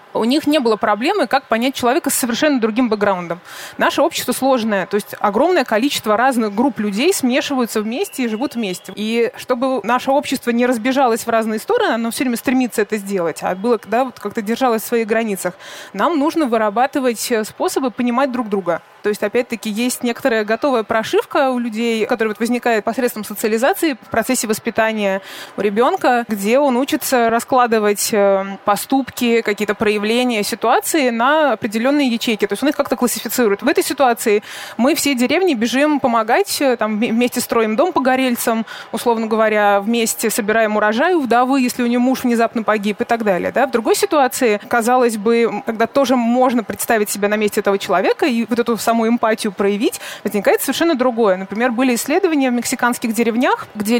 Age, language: 20-39, Russian